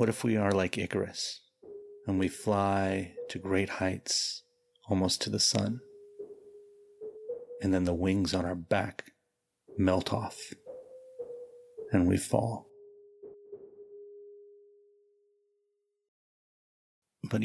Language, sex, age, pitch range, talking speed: English, male, 30-49, 95-150 Hz, 100 wpm